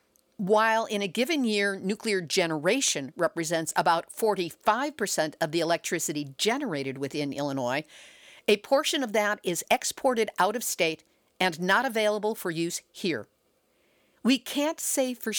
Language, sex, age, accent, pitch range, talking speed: English, female, 50-69, American, 160-225 Hz, 135 wpm